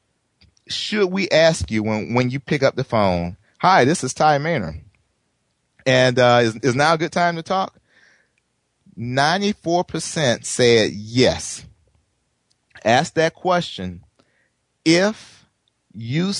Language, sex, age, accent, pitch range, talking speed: English, male, 30-49, American, 115-155 Hz, 130 wpm